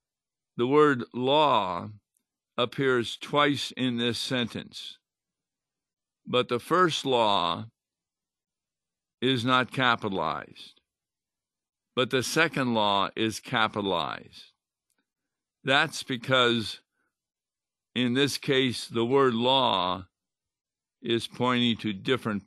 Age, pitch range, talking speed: 60-79, 115-135 Hz, 90 wpm